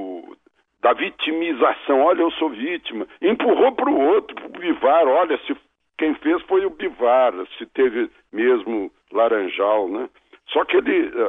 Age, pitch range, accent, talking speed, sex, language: 60-79, 300-390 Hz, Brazilian, 140 wpm, male, Portuguese